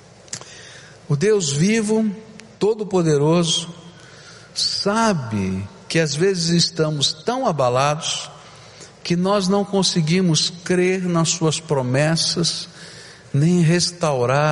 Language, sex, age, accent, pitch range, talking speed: Portuguese, male, 60-79, Brazilian, 150-195 Hz, 90 wpm